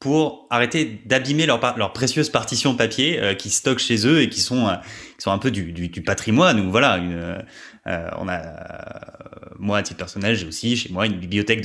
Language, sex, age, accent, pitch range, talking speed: English, male, 20-39, French, 90-115 Hz, 215 wpm